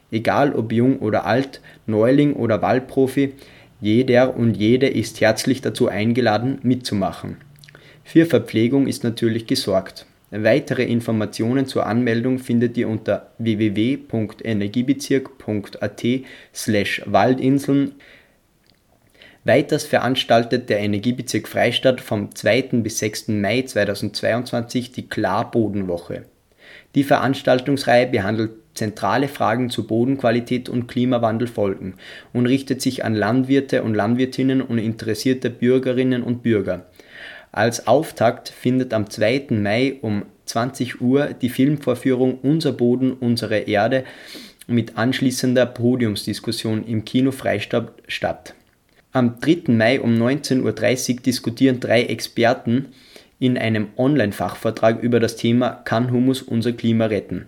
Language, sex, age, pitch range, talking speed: German, male, 20-39, 110-130 Hz, 110 wpm